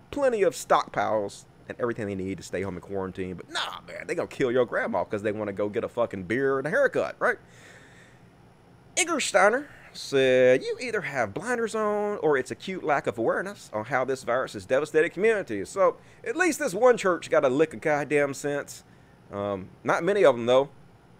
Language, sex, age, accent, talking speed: English, male, 30-49, American, 205 wpm